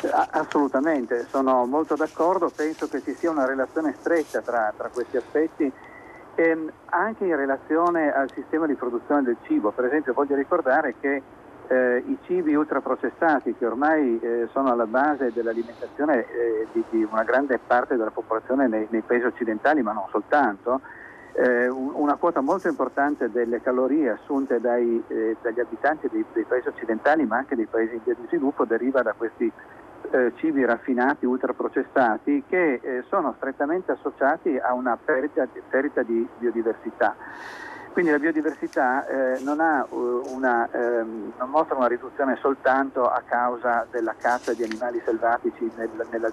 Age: 50-69